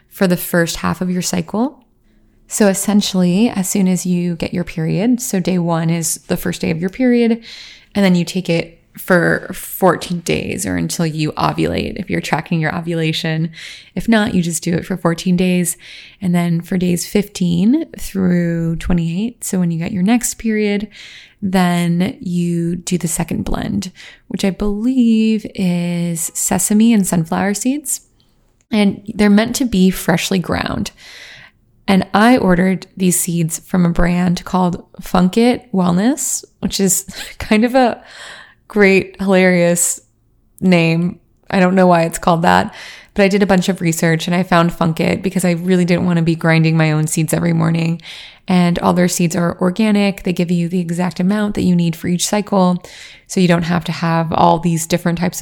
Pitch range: 170-200 Hz